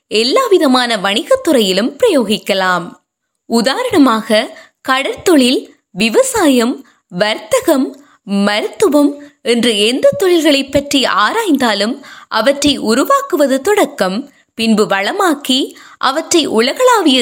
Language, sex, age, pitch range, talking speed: Tamil, female, 20-39, 225-330 Hz, 75 wpm